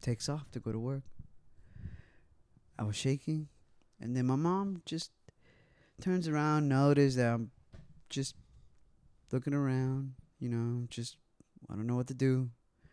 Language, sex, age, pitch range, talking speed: English, male, 20-39, 115-150 Hz, 145 wpm